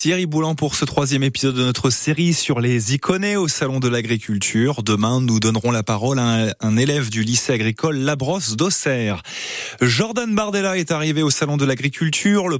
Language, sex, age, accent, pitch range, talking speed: French, male, 20-39, French, 115-150 Hz, 180 wpm